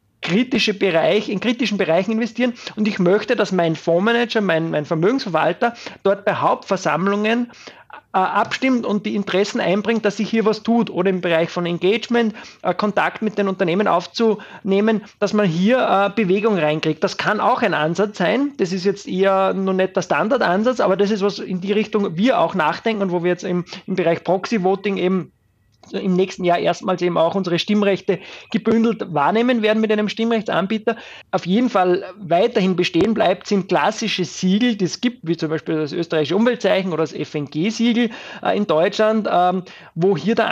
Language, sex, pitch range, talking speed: German, male, 170-215 Hz, 180 wpm